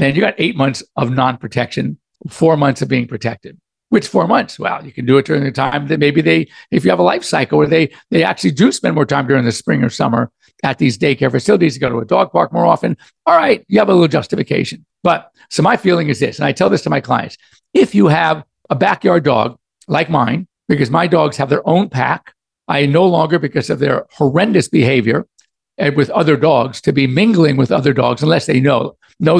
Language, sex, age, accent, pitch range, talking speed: English, male, 50-69, American, 135-170 Hz, 230 wpm